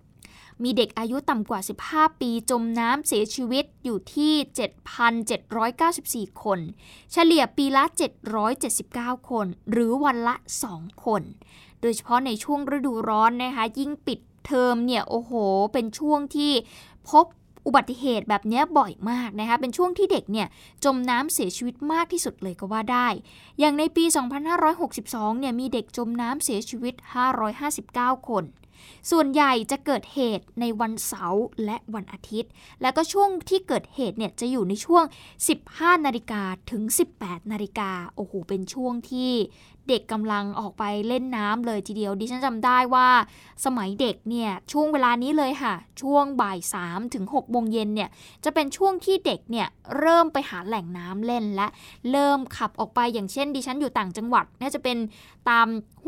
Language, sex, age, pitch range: Thai, female, 20-39, 220-285 Hz